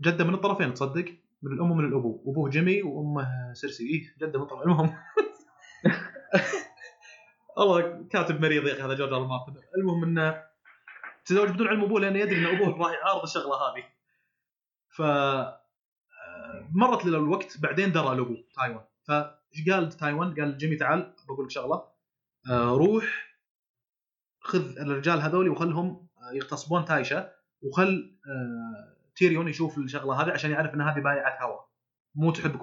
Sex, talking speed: male, 140 wpm